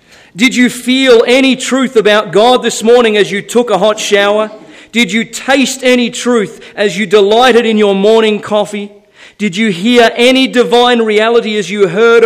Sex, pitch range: male, 200-240 Hz